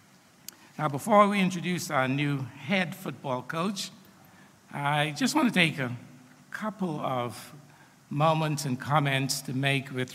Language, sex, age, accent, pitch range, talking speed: English, male, 60-79, American, 130-170 Hz, 135 wpm